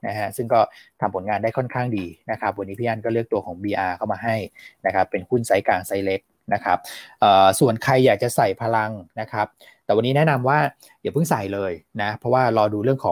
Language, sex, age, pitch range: Thai, male, 20-39, 105-130 Hz